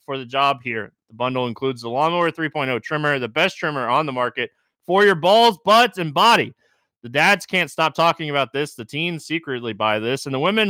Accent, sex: American, male